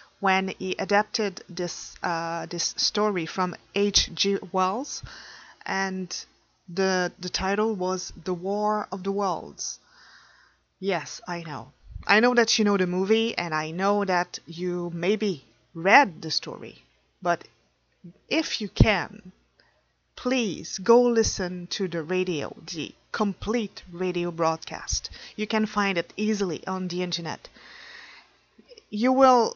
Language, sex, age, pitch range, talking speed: English, female, 30-49, 180-220 Hz, 130 wpm